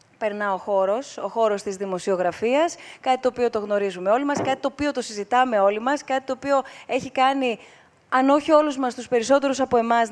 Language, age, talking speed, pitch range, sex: Greek, 20-39, 200 wpm, 210-265 Hz, female